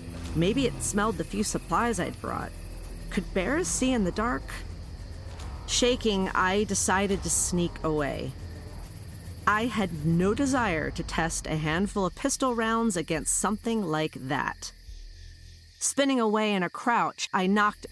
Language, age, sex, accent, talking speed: English, 40-59, female, American, 140 wpm